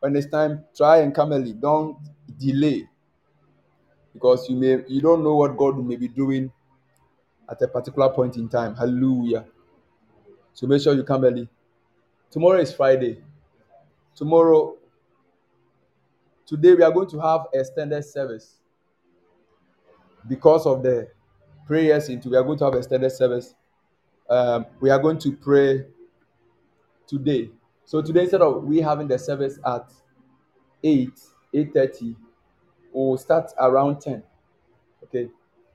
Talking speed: 135 wpm